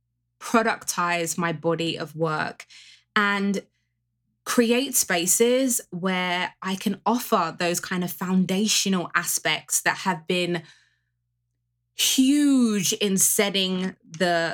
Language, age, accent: English, 20-39, British